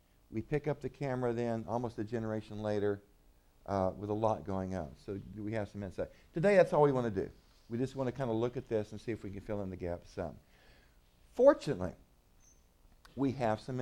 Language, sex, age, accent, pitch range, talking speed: English, male, 50-69, American, 100-145 Hz, 220 wpm